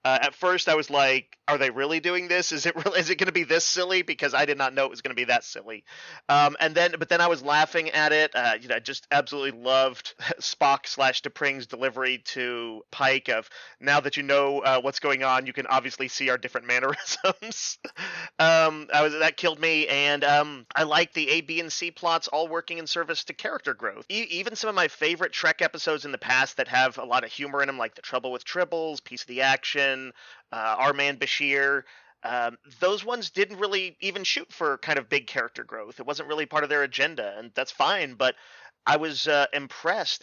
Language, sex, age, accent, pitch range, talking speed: English, male, 30-49, American, 130-160 Hz, 230 wpm